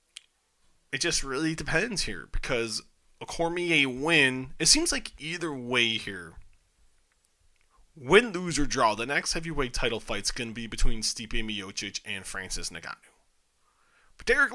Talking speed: 145 wpm